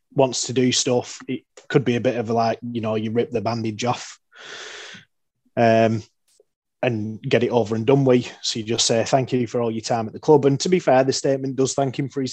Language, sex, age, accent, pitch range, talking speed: English, male, 20-39, British, 115-135 Hz, 245 wpm